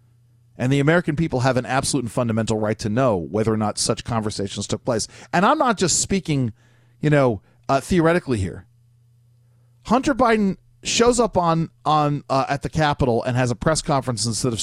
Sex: male